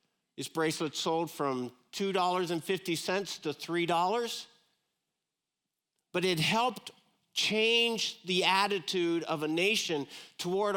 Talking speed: 95 wpm